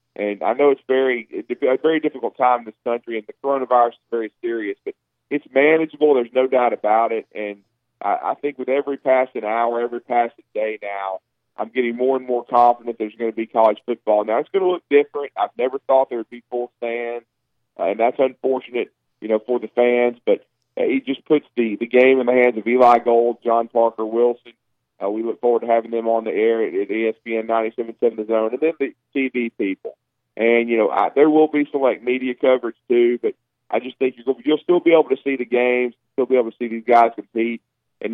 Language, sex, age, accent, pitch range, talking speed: English, male, 40-59, American, 110-130 Hz, 230 wpm